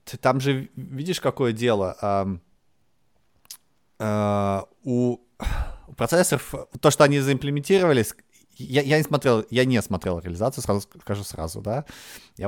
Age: 20-39